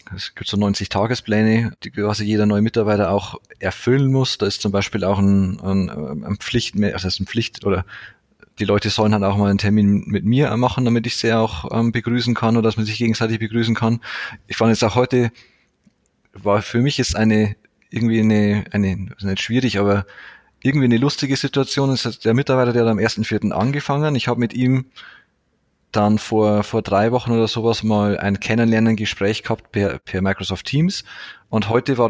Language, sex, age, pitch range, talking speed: German, male, 30-49, 105-125 Hz, 190 wpm